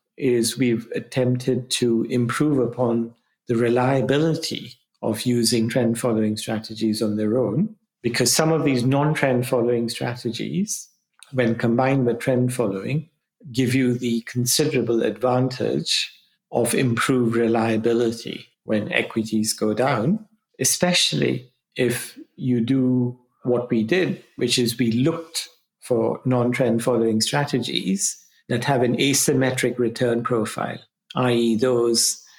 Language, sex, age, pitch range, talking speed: English, male, 50-69, 115-135 Hz, 110 wpm